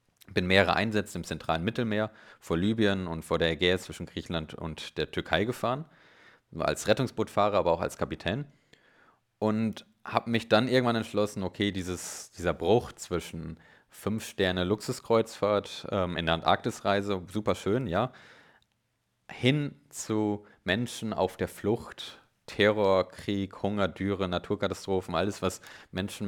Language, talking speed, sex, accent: German, 135 wpm, male, German